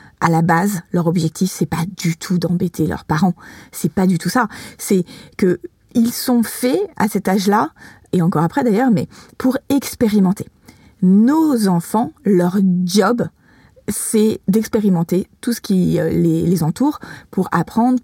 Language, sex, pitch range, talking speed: French, female, 175-225 Hz, 145 wpm